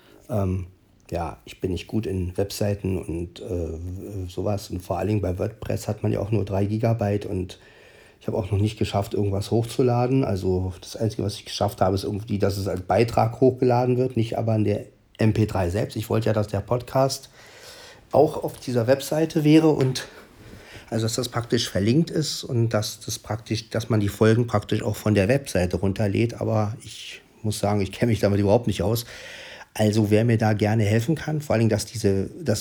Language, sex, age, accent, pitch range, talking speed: German, male, 40-59, German, 100-120 Hz, 195 wpm